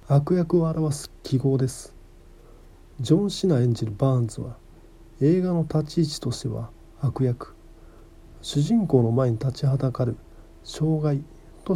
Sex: male